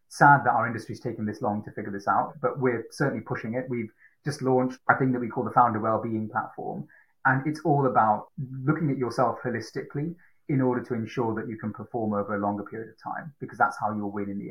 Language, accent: English, British